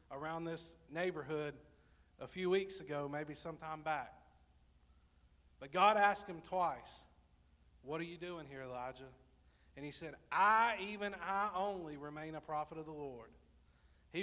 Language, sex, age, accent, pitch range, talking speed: English, male, 40-59, American, 125-195 Hz, 150 wpm